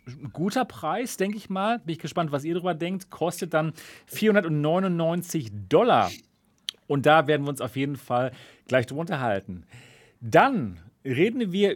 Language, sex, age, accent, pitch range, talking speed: German, male, 40-59, German, 145-195 Hz, 155 wpm